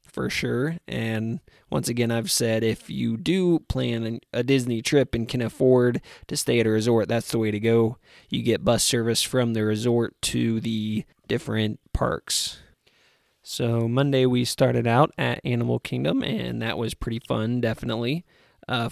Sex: male